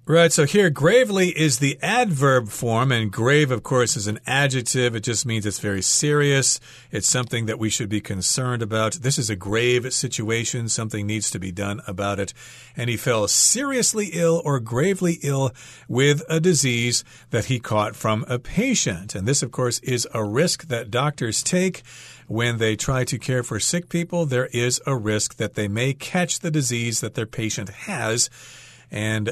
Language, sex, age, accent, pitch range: Chinese, male, 40-59, American, 110-150 Hz